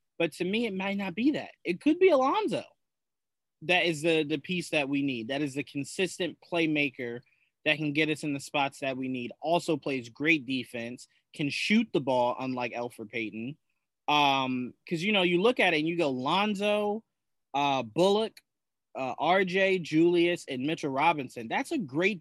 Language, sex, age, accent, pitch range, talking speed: English, male, 20-39, American, 135-180 Hz, 185 wpm